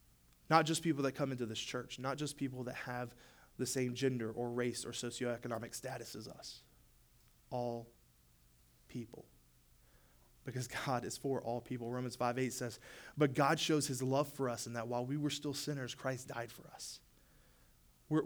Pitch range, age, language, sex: 120-190 Hz, 20-39, English, male